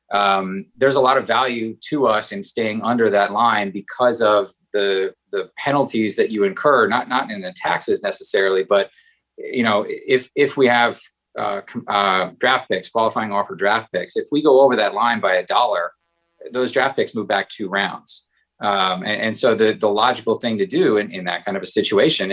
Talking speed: 200 wpm